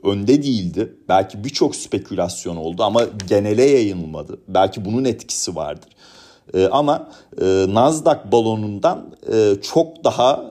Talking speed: 120 wpm